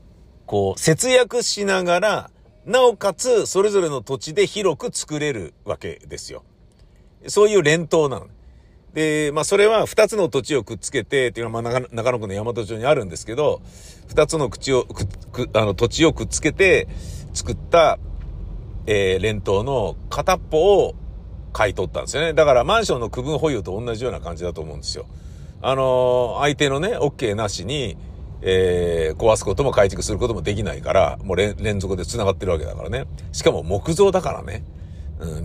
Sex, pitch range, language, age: male, 100-160 Hz, Japanese, 50-69